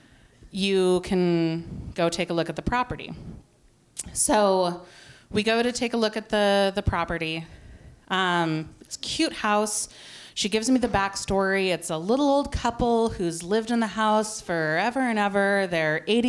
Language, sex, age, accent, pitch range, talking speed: English, female, 30-49, American, 175-215 Hz, 160 wpm